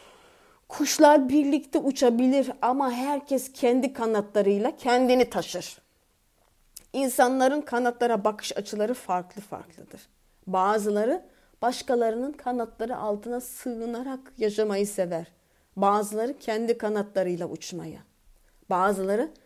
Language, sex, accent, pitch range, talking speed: Turkish, female, native, 190-240 Hz, 85 wpm